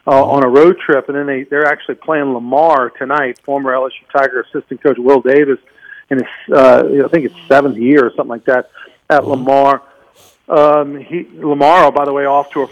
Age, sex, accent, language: 50-69, male, American, English